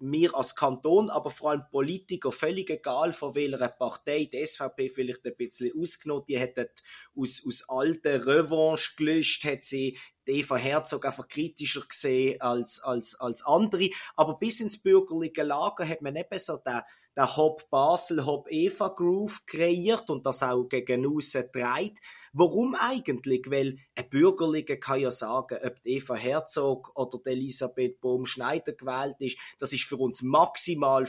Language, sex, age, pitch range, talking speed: German, male, 30-49, 130-170 Hz, 150 wpm